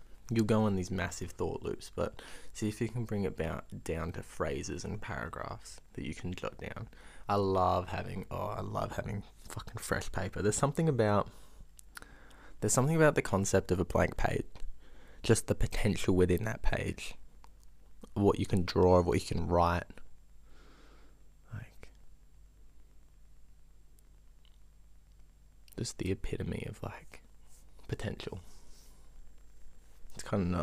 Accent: Australian